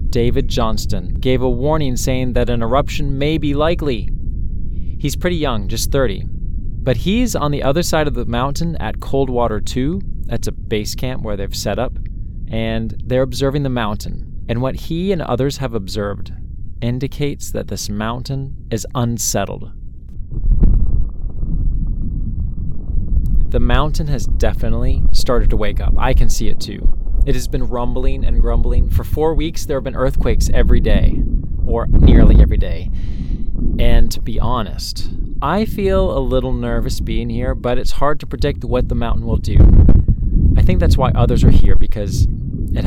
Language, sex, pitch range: English, male, 95-130 Hz